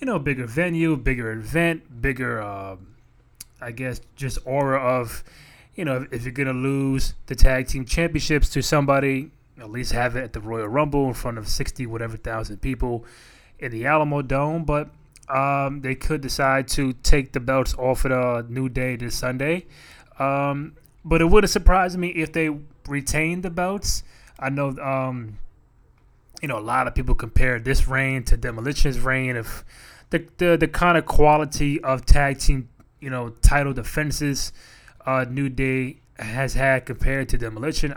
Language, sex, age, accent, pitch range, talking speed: English, male, 20-39, American, 125-150 Hz, 175 wpm